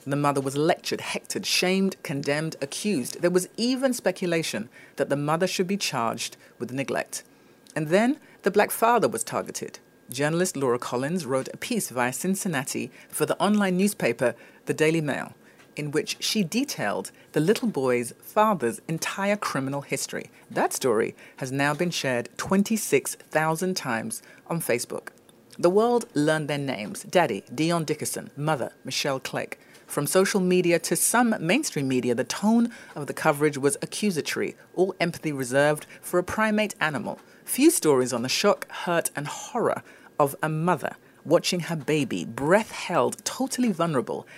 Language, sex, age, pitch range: English, female, 40-59, 140-200 Hz